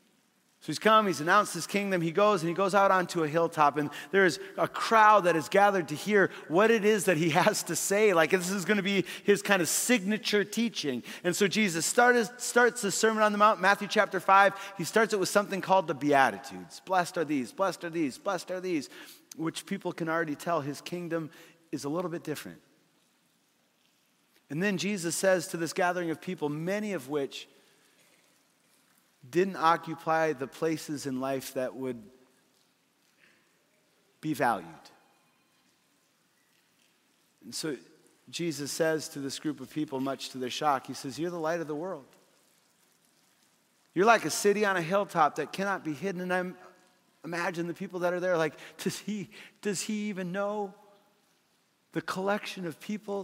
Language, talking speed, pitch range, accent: English, 180 wpm, 160-205 Hz, American